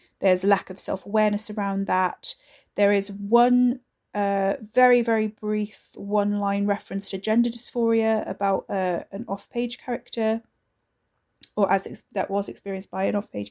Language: English